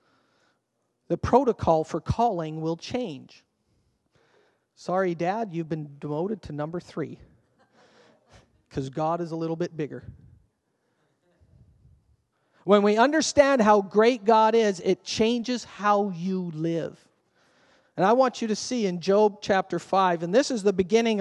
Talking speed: 135 wpm